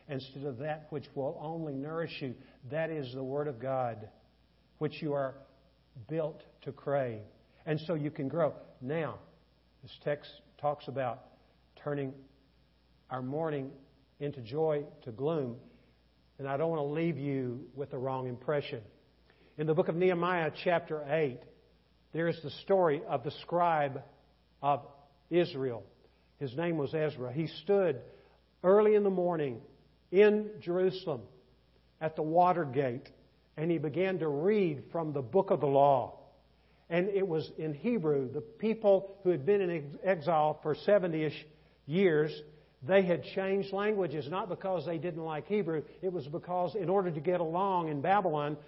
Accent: American